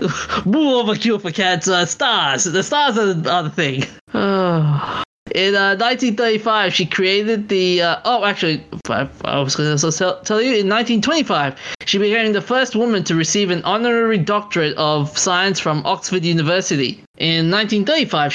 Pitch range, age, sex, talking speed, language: 155-205 Hz, 20-39, male, 150 wpm, English